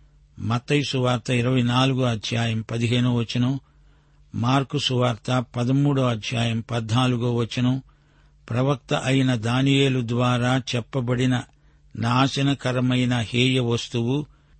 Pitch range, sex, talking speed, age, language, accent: 120-135 Hz, male, 80 wpm, 60-79, Telugu, native